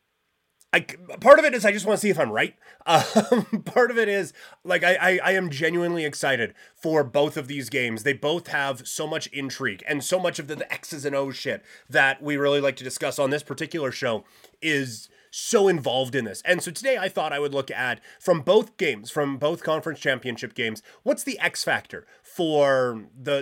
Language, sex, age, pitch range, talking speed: English, male, 30-49, 130-175 Hz, 215 wpm